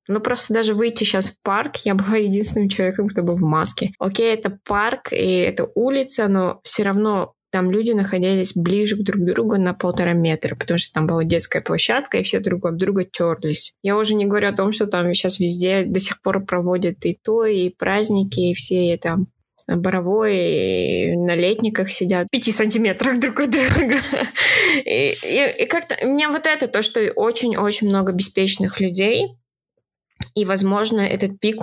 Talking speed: 180 wpm